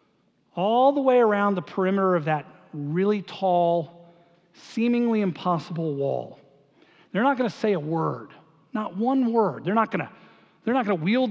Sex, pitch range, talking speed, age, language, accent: male, 210-275 Hz, 150 wpm, 40-59, English, American